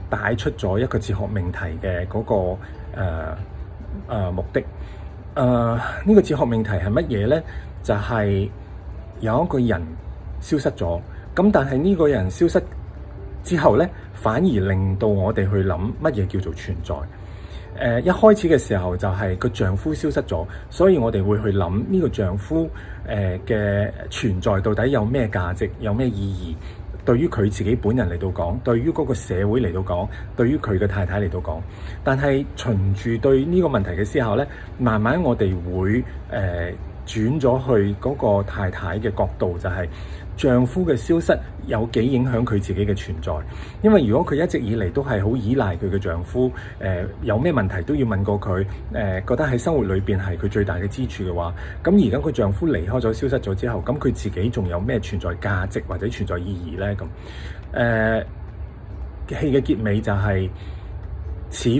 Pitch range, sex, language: 90-115 Hz, male, Chinese